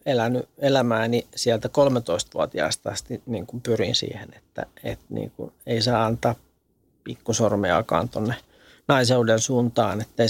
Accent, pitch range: native, 115-130 Hz